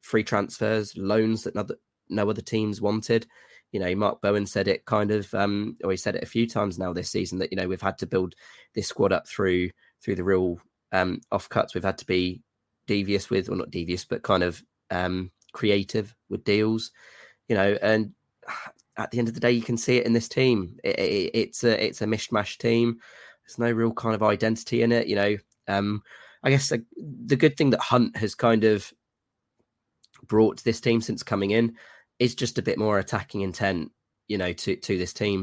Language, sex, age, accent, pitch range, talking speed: English, male, 20-39, British, 95-115 Hz, 215 wpm